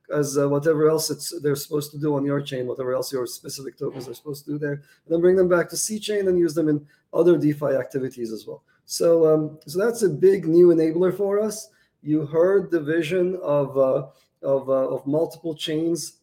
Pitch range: 140-180 Hz